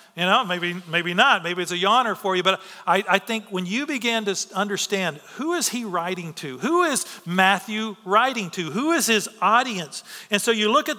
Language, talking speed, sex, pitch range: English, 215 wpm, male, 180-225 Hz